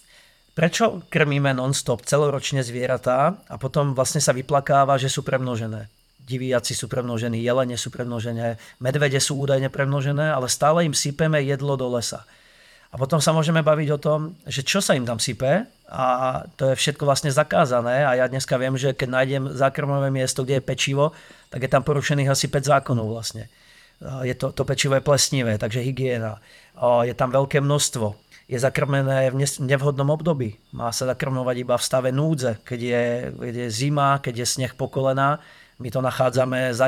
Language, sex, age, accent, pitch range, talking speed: Czech, male, 40-59, native, 125-145 Hz, 175 wpm